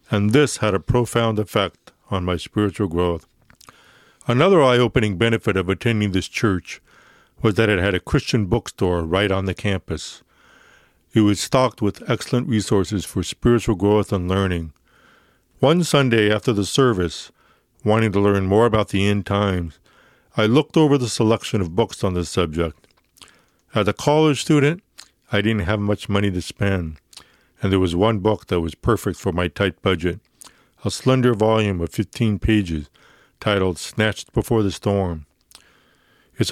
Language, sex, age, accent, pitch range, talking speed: English, male, 60-79, American, 90-115 Hz, 160 wpm